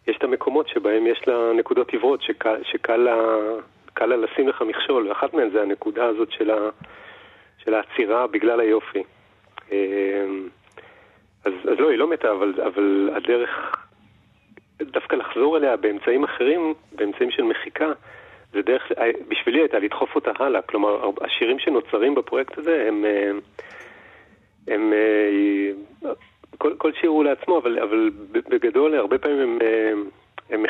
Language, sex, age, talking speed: Hebrew, male, 40-59, 125 wpm